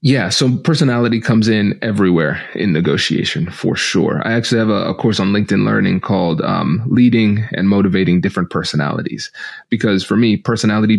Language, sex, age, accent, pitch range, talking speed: English, male, 30-49, American, 95-115 Hz, 165 wpm